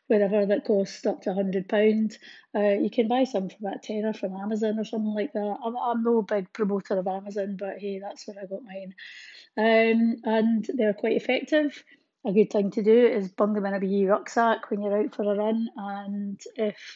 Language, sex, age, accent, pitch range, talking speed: English, female, 30-49, British, 200-235 Hz, 210 wpm